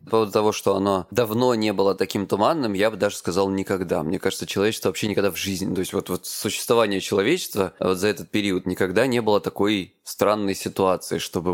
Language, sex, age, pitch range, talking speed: Russian, male, 20-39, 95-115 Hz, 205 wpm